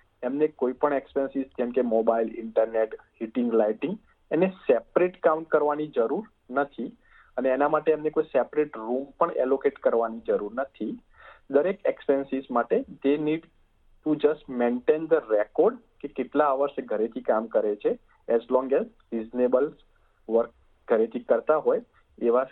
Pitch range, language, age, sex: 125-160 Hz, Gujarati, 40-59, male